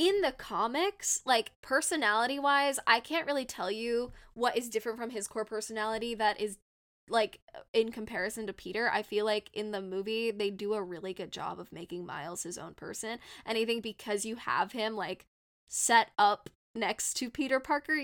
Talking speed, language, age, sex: 185 wpm, English, 10-29, female